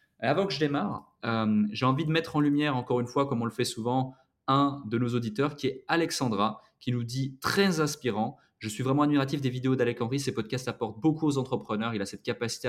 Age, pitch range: 20-39, 110-140 Hz